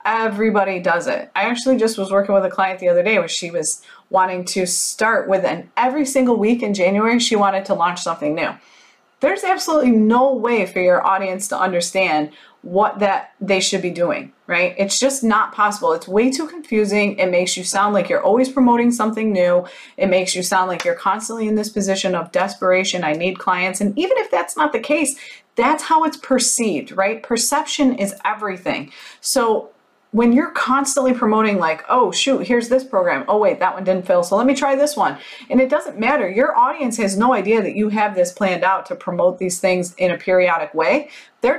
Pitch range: 190-260 Hz